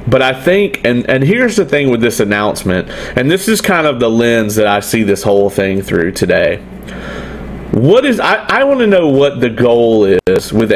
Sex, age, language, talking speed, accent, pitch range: male, 40-59, English, 210 wpm, American, 110-145 Hz